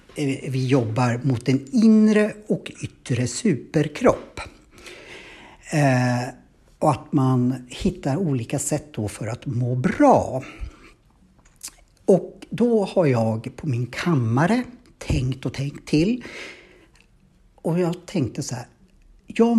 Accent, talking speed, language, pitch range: Norwegian, 115 wpm, Swedish, 125-190 Hz